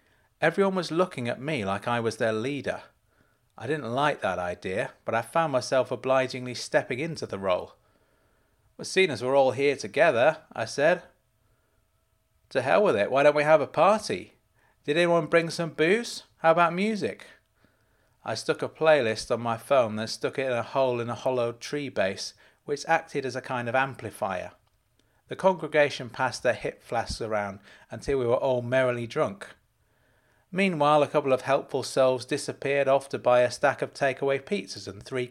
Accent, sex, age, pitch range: British, male, 30-49, 110-150 Hz